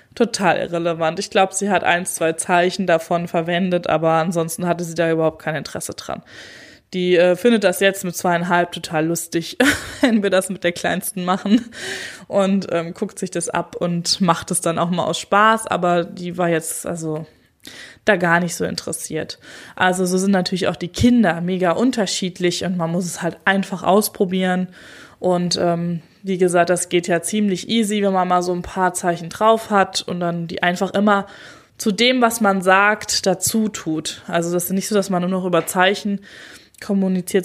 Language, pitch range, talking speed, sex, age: German, 170-195 Hz, 190 wpm, female, 20-39